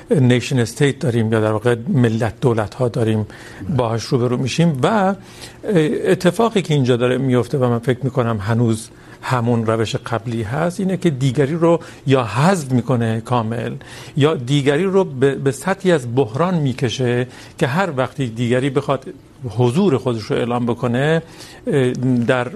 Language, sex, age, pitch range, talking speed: Urdu, male, 50-69, 120-145 Hz, 150 wpm